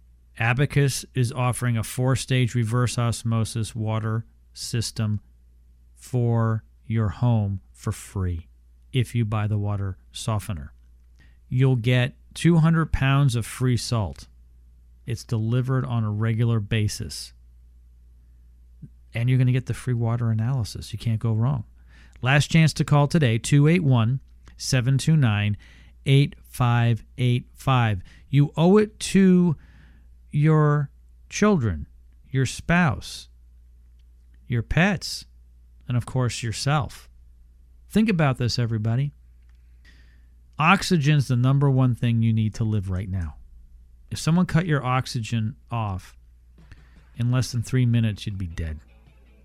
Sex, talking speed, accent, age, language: male, 115 wpm, American, 40-59, English